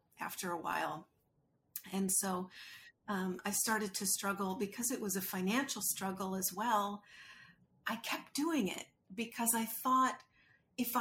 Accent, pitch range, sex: American, 190-230 Hz, female